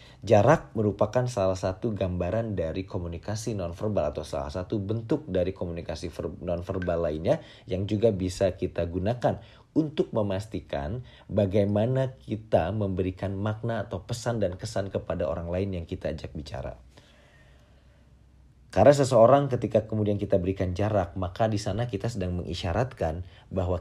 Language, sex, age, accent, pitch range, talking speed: Indonesian, male, 40-59, native, 90-115 Hz, 130 wpm